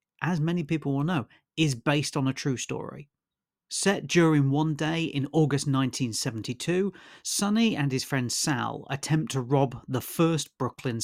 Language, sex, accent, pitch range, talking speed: English, male, British, 120-155 Hz, 160 wpm